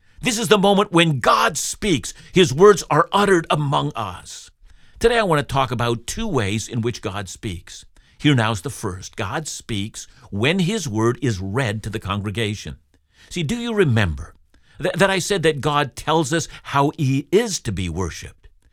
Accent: American